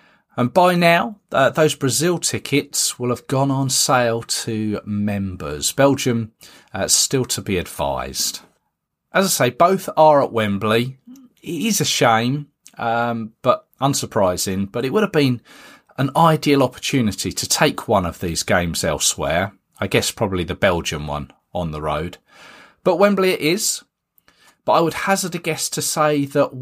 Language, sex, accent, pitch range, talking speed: English, male, British, 115-170 Hz, 160 wpm